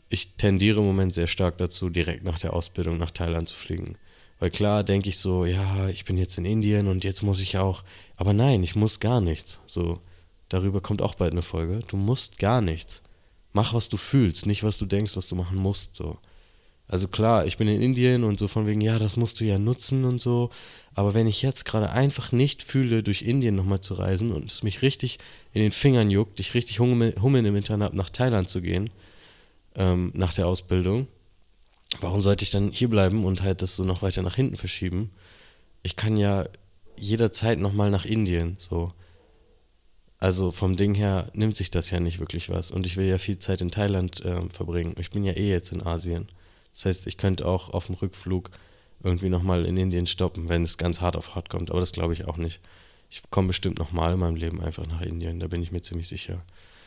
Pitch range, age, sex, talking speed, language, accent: 90-105 Hz, 20-39, male, 215 wpm, German, German